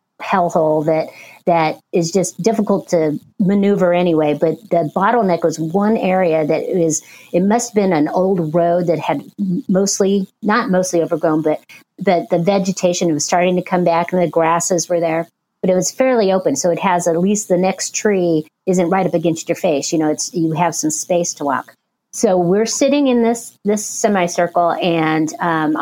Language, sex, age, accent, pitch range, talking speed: English, female, 50-69, American, 160-195 Hz, 195 wpm